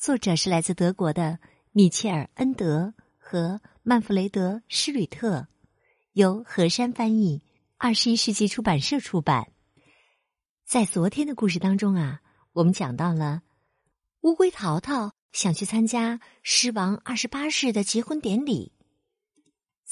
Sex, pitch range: female, 185-255 Hz